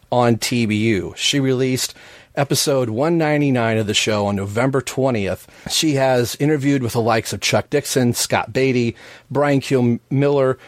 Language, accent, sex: English, American, male